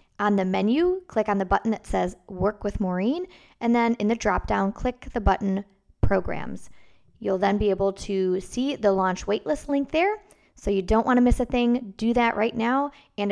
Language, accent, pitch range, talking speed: English, American, 195-235 Hz, 205 wpm